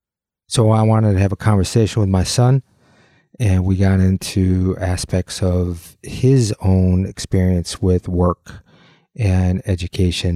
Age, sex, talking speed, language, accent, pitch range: 30-49, male, 135 wpm, English, American, 90-105 Hz